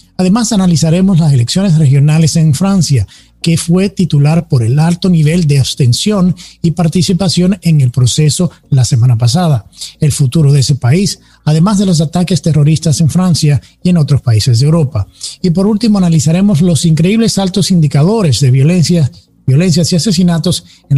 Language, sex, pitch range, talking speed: English, male, 140-175 Hz, 160 wpm